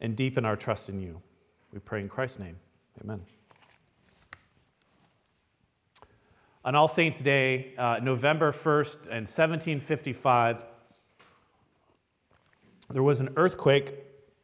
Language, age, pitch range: English, 40-59, 120-145 Hz